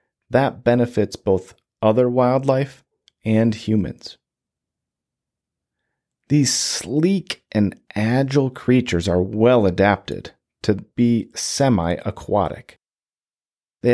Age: 40-59